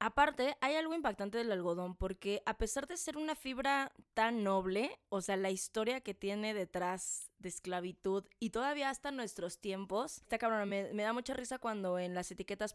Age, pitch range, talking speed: 20-39, 200-235 Hz, 190 wpm